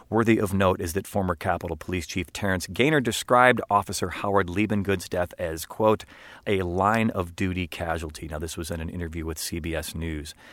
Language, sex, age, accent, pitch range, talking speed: English, male, 40-59, American, 85-105 Hz, 180 wpm